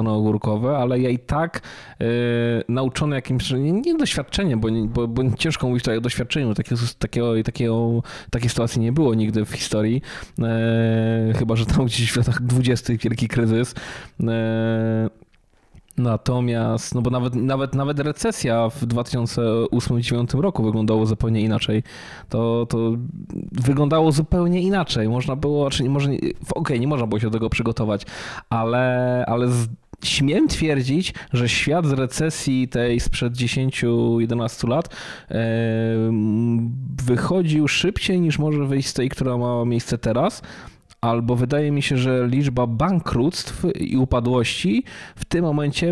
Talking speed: 135 wpm